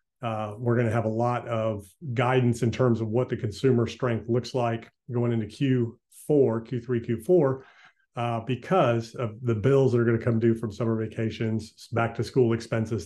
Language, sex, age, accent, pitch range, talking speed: English, male, 40-59, American, 115-130 Hz, 190 wpm